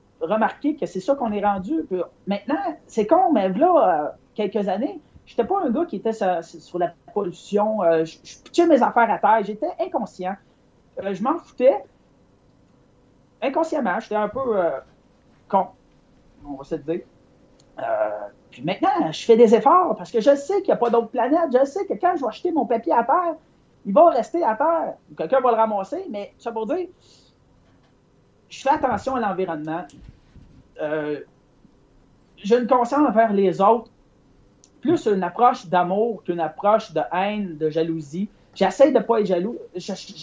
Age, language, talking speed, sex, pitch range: 40-59, French, 175 wpm, male, 185-280 Hz